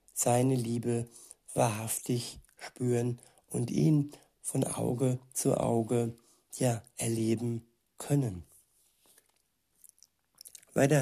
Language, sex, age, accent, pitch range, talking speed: German, male, 60-79, German, 115-130 Hz, 70 wpm